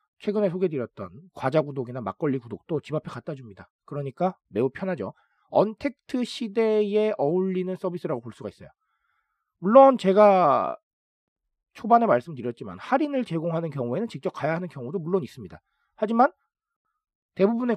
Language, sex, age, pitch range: Korean, male, 40-59, 135-215 Hz